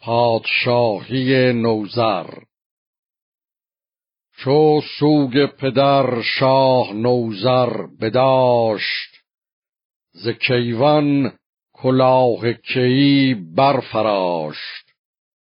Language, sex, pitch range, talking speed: Persian, male, 120-140 Hz, 55 wpm